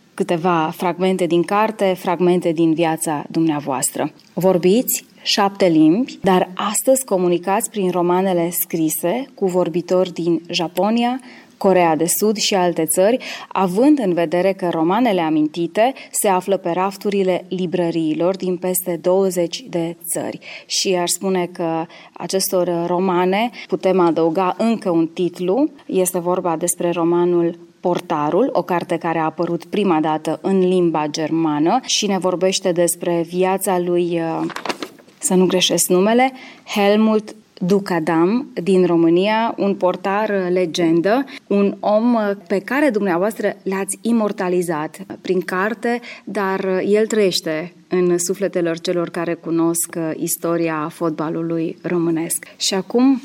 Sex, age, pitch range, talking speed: female, 20-39, 170-200 Hz, 120 wpm